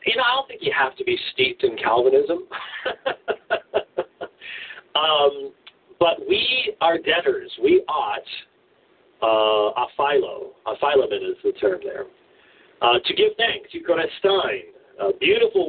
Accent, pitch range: American, 375-425 Hz